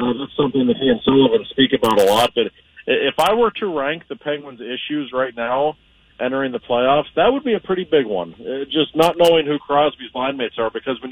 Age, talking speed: 40-59, 225 wpm